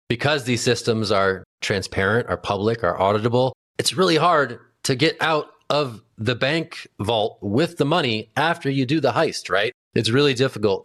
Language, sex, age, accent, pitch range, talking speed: English, male, 30-49, American, 100-120 Hz, 170 wpm